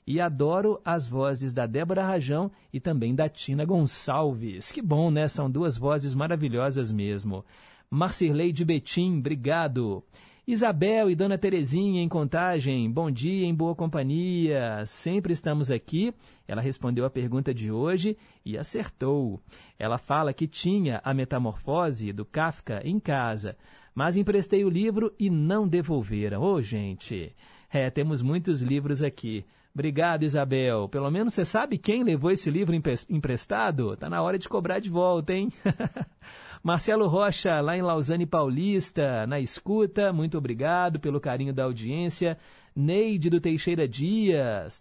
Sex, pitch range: male, 135-180 Hz